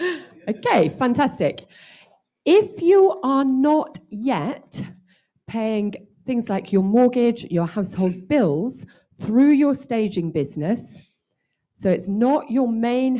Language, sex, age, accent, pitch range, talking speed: English, female, 40-59, British, 160-235 Hz, 110 wpm